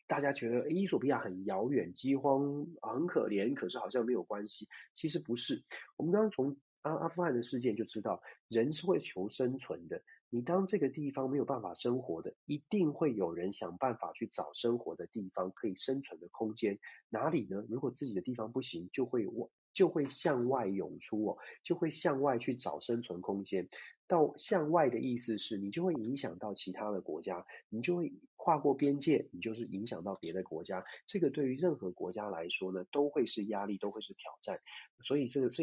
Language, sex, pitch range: Chinese, male, 110-155 Hz